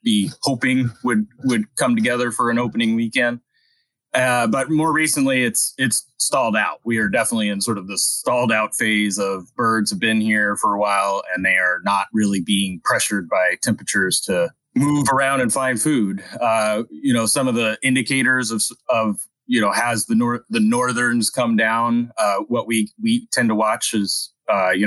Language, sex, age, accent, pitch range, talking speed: English, male, 30-49, American, 105-130 Hz, 190 wpm